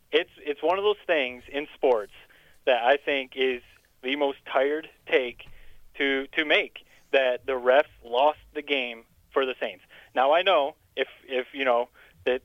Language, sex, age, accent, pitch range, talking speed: English, male, 20-39, American, 135-200 Hz, 175 wpm